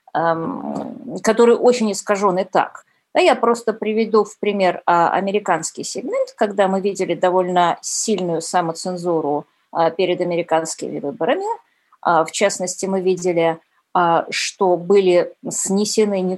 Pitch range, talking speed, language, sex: 180-220 Hz, 105 wpm, Russian, female